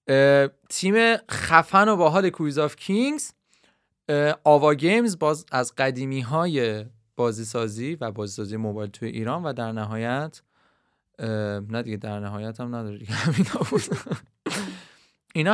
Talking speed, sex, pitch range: 125 wpm, male, 110-150 Hz